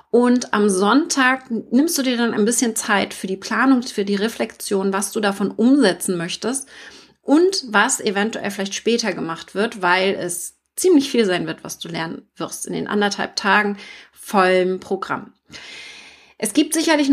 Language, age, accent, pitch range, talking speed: German, 30-49, German, 200-260 Hz, 165 wpm